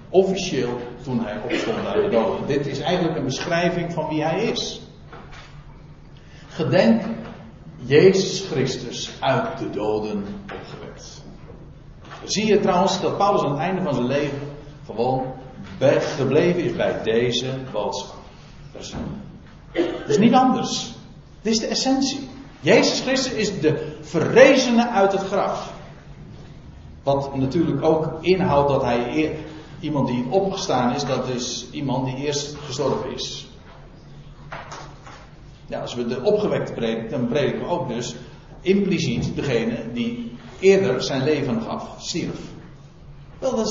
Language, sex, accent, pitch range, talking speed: Dutch, male, Dutch, 130-200 Hz, 135 wpm